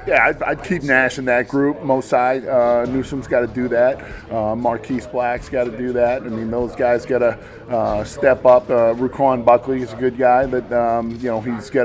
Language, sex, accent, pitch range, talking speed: English, male, American, 105-130 Hz, 215 wpm